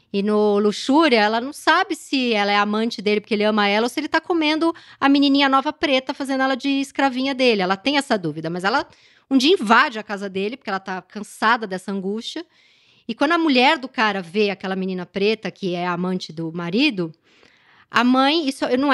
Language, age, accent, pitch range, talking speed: Portuguese, 20-39, Brazilian, 210-285 Hz, 210 wpm